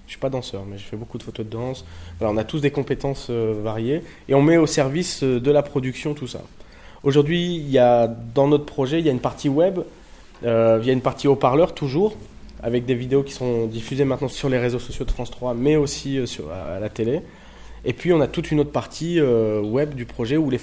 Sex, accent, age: male, French, 20-39